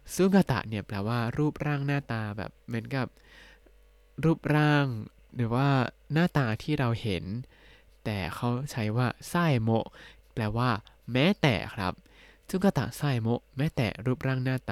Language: Thai